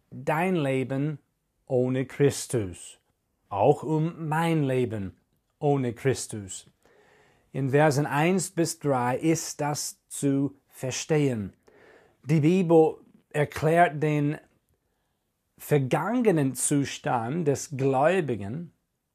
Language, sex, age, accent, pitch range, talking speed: German, male, 40-59, German, 130-165 Hz, 85 wpm